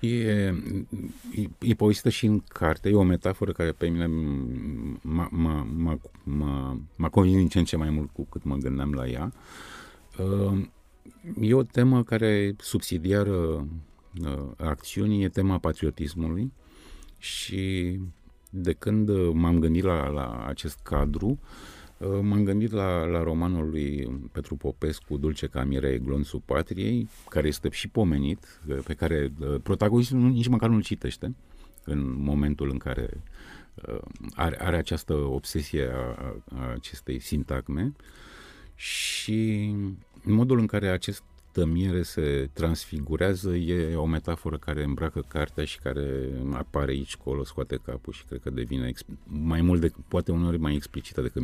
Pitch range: 70-95 Hz